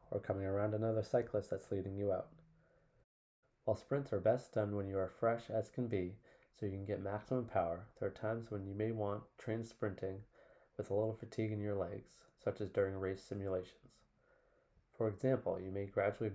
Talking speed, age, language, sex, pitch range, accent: 195 wpm, 20-39, English, male, 95-115 Hz, American